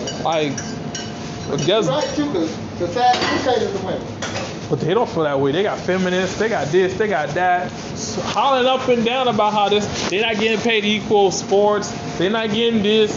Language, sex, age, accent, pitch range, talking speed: English, male, 20-39, American, 170-215 Hz, 165 wpm